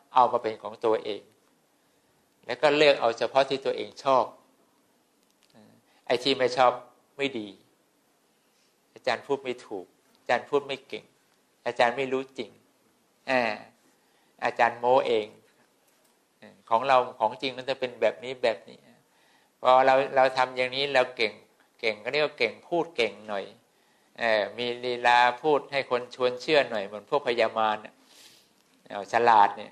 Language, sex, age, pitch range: English, male, 60-79, 115-135 Hz